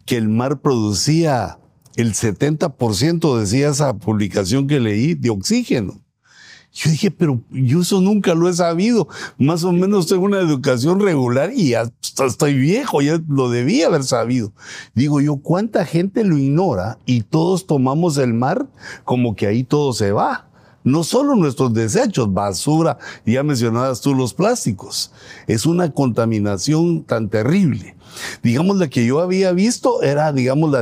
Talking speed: 155 wpm